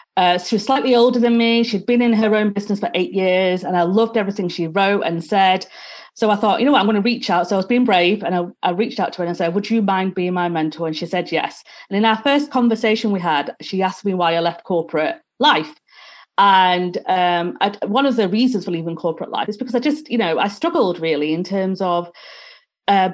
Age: 30-49